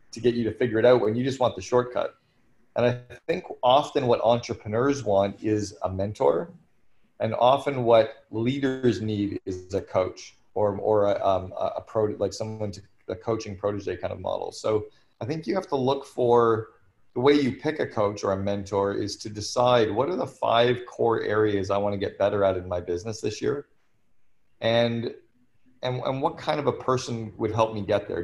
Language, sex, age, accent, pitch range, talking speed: English, male, 30-49, American, 105-125 Hz, 200 wpm